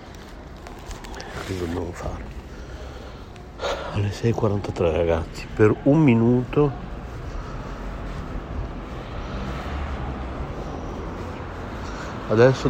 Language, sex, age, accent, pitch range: Italian, male, 60-79, native, 80-115 Hz